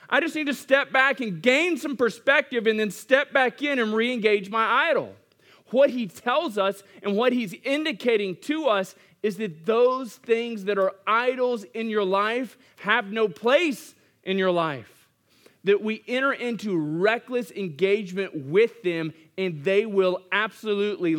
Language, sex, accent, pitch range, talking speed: English, male, American, 150-215 Hz, 160 wpm